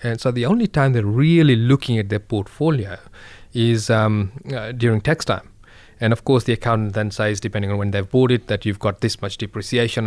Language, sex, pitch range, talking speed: English, male, 105-125 Hz, 215 wpm